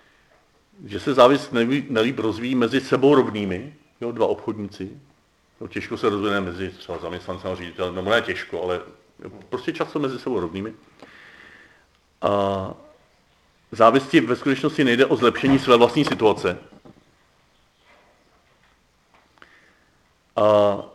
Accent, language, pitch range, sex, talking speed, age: native, Czech, 95-120 Hz, male, 110 wpm, 40-59